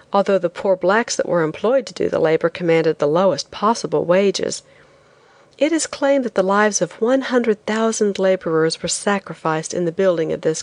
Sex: female